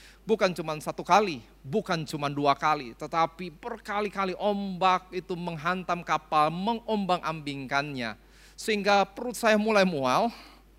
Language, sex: Indonesian, male